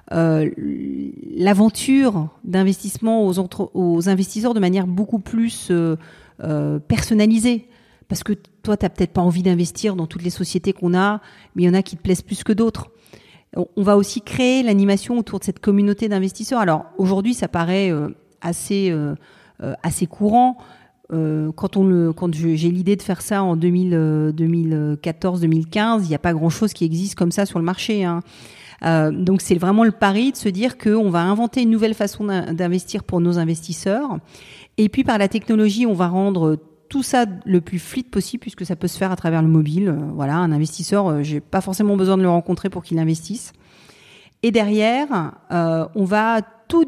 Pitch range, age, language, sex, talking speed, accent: 170-215 Hz, 40-59, French, female, 190 wpm, French